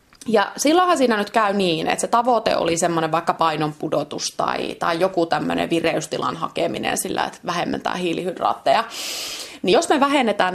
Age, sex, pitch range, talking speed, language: 30-49, female, 165-195 Hz, 155 wpm, Finnish